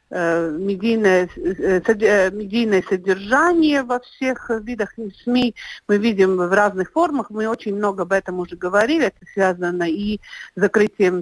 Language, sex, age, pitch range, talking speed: Russian, female, 50-69, 185-230 Hz, 130 wpm